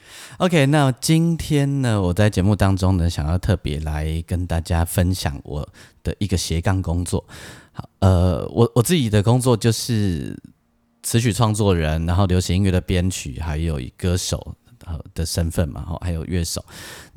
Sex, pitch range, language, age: male, 85-105 Hz, Chinese, 30-49